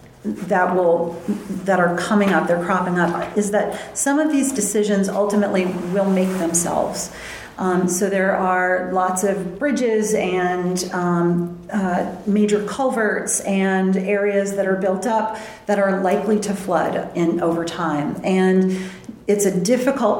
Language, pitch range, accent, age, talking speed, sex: English, 170-200 Hz, American, 40-59, 145 wpm, female